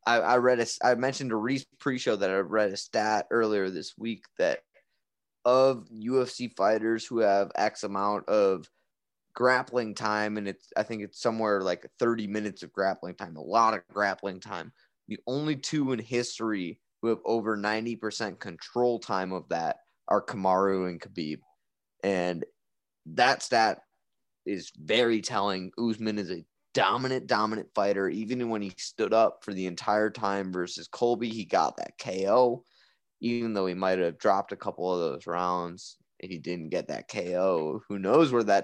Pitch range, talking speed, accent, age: 95-120 Hz, 170 wpm, American, 20-39